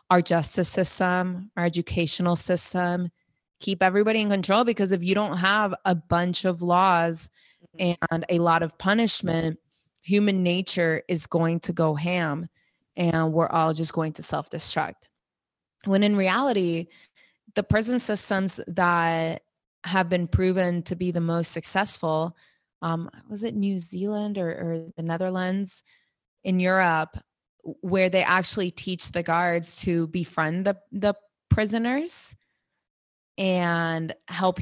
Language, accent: English, American